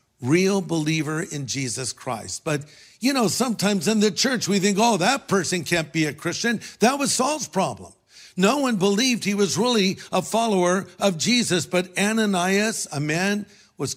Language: English